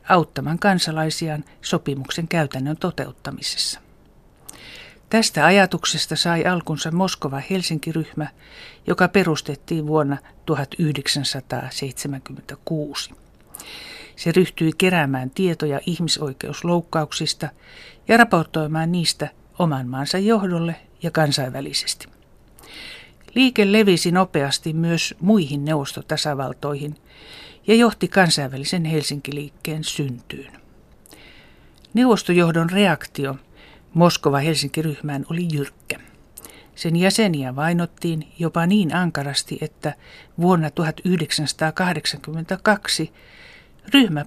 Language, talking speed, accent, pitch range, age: Finnish, 75 wpm, native, 145-180 Hz, 60-79